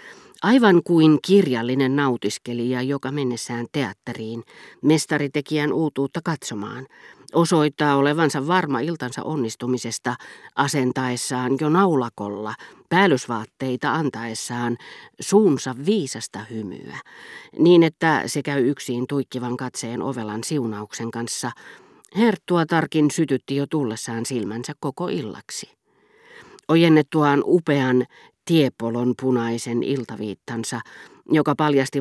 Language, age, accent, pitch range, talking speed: Finnish, 40-59, native, 120-155 Hz, 90 wpm